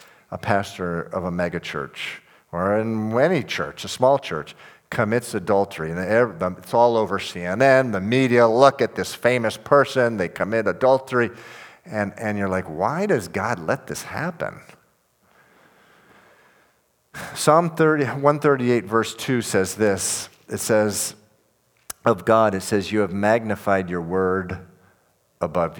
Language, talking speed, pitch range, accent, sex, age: English, 135 wpm, 95-115 Hz, American, male, 50-69